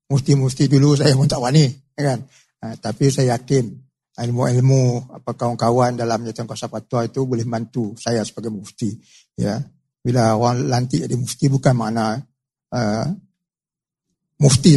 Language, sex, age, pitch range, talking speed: Malay, male, 60-79, 120-175 Hz, 145 wpm